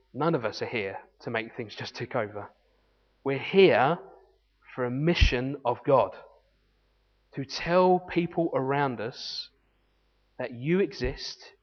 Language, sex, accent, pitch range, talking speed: English, male, British, 120-150 Hz, 135 wpm